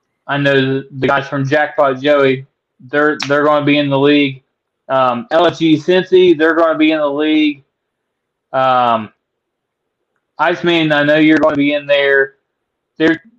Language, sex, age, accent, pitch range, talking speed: English, male, 20-39, American, 135-155 Hz, 165 wpm